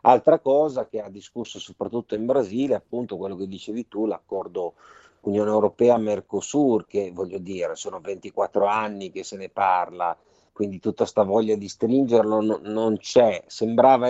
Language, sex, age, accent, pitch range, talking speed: Italian, male, 50-69, native, 95-115 Hz, 150 wpm